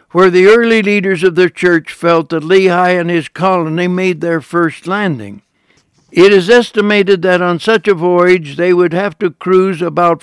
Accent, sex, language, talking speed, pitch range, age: American, male, English, 180 wpm, 170-195 Hz, 60-79